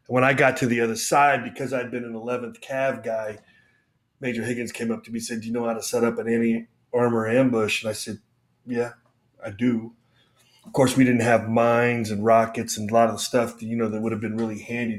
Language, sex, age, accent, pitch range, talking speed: English, male, 30-49, American, 115-125 Hz, 245 wpm